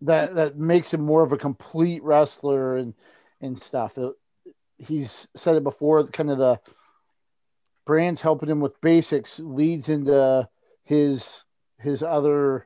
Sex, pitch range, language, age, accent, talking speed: male, 130-150 Hz, English, 50-69, American, 135 wpm